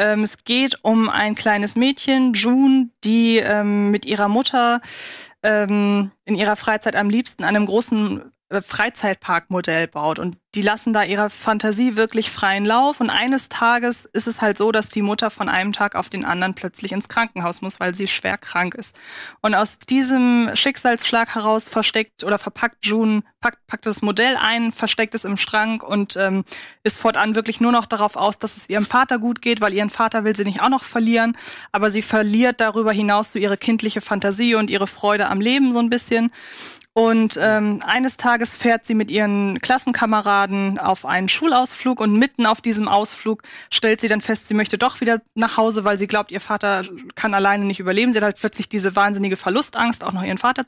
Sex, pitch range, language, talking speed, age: female, 205-235 Hz, German, 195 wpm, 20-39